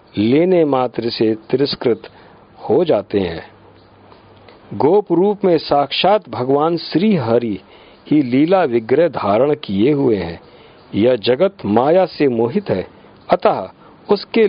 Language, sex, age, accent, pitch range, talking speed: Hindi, male, 50-69, native, 125-165 Hz, 110 wpm